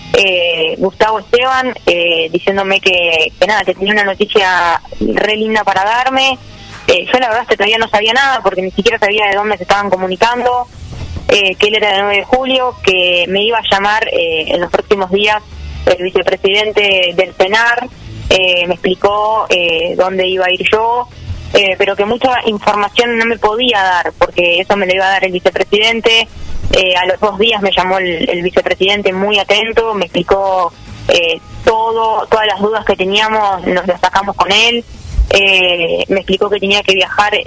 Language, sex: Spanish, female